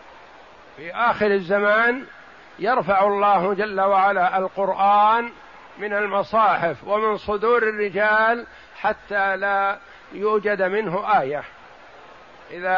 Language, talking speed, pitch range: Arabic, 90 wpm, 190-220 Hz